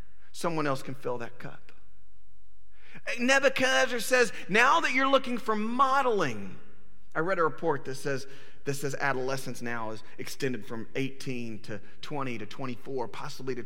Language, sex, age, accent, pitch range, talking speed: English, male, 40-59, American, 115-170 Hz, 150 wpm